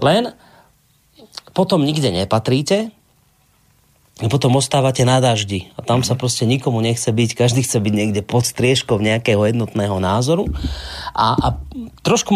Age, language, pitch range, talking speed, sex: 30-49, Slovak, 125-160 Hz, 135 wpm, male